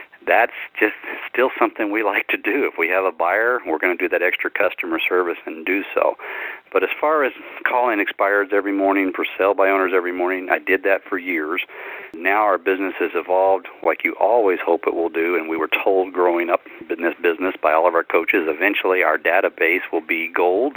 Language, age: English, 50-69